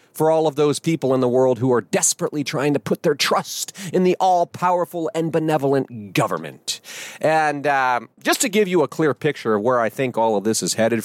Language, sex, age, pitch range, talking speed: English, male, 40-59, 130-165 Hz, 215 wpm